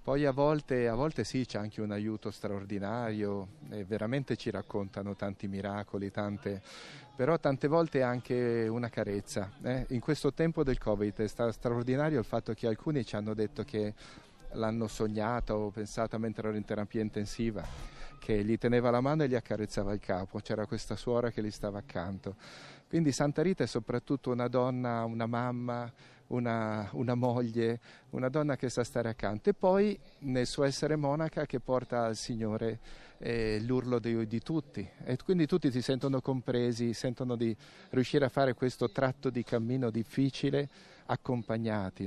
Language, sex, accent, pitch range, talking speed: Italian, male, native, 110-140 Hz, 165 wpm